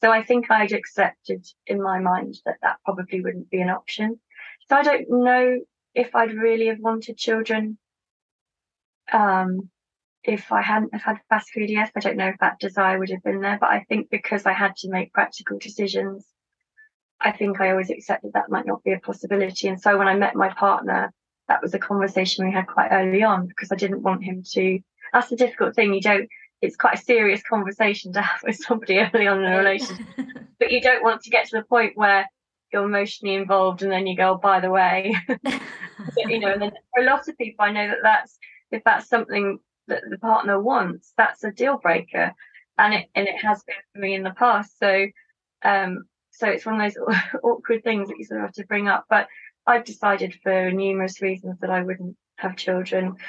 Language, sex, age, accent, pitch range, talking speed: English, female, 20-39, British, 190-225 Hz, 215 wpm